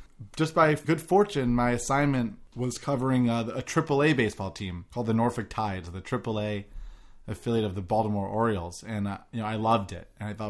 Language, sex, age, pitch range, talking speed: English, male, 30-49, 105-125 Hz, 190 wpm